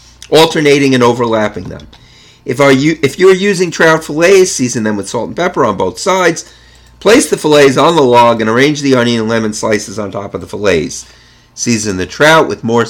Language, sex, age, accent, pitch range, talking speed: English, male, 50-69, American, 110-155 Hz, 195 wpm